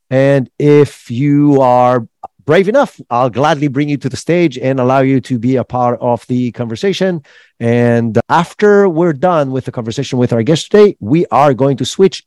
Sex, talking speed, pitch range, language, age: male, 190 wpm, 115-165 Hz, English, 40-59